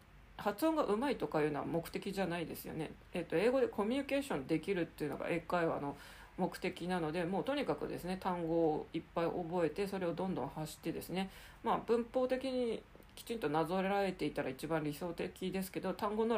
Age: 40-59